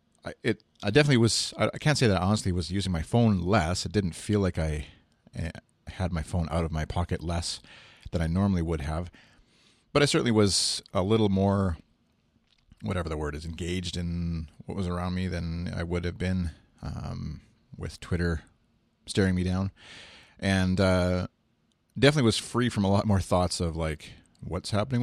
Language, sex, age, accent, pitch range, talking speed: English, male, 40-59, American, 85-110 Hz, 180 wpm